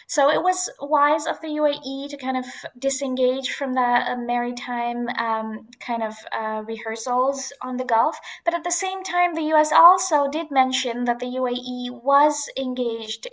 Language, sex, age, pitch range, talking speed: English, female, 20-39, 235-280 Hz, 170 wpm